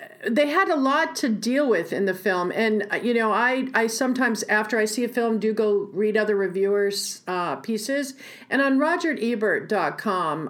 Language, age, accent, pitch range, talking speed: English, 50-69, American, 185-235 Hz, 175 wpm